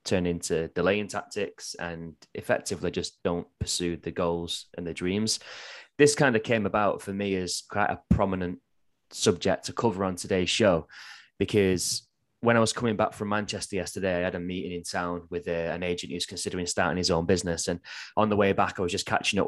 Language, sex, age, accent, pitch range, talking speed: English, male, 20-39, British, 90-105 Hz, 205 wpm